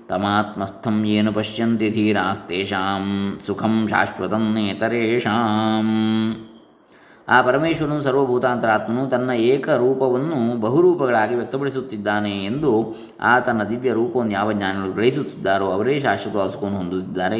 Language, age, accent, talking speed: Kannada, 20-39, native, 85 wpm